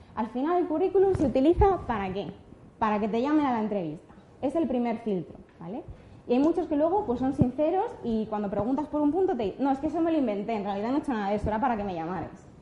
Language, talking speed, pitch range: Spanish, 265 wpm, 210-295 Hz